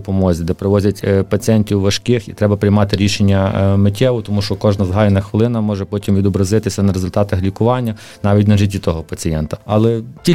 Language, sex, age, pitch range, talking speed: Ukrainian, male, 30-49, 100-125 Hz, 160 wpm